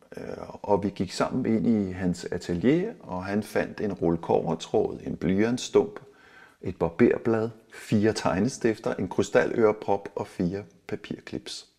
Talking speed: 120 wpm